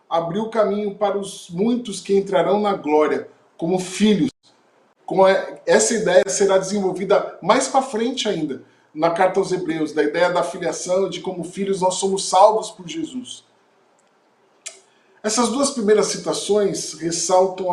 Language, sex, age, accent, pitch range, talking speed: Portuguese, male, 20-39, Brazilian, 185-220 Hz, 135 wpm